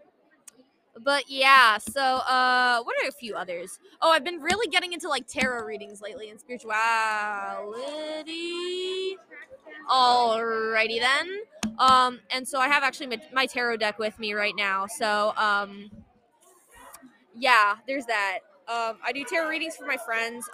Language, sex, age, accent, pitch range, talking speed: English, female, 20-39, American, 230-340 Hz, 145 wpm